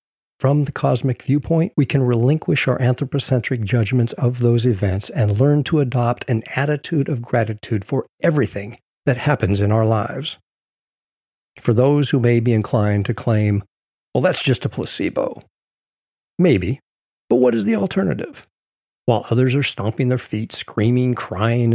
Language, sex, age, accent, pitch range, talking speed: English, male, 50-69, American, 115-145 Hz, 150 wpm